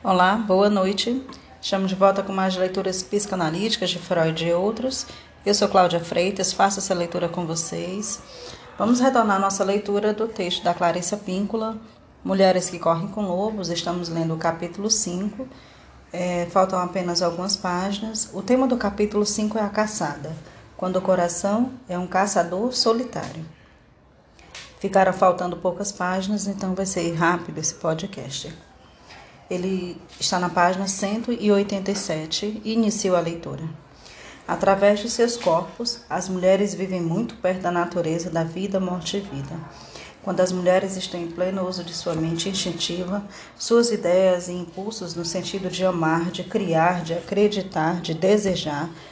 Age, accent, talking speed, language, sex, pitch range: 20-39, Brazilian, 150 wpm, Portuguese, female, 175-200 Hz